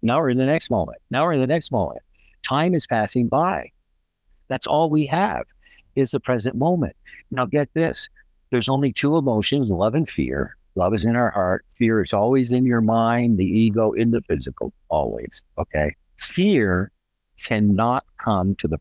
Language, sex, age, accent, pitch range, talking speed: English, male, 60-79, American, 90-130 Hz, 180 wpm